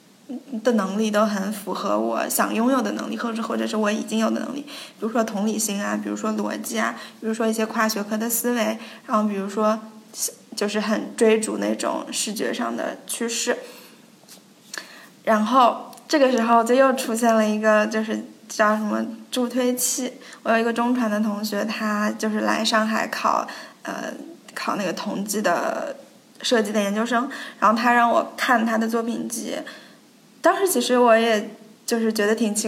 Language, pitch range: Chinese, 210-240 Hz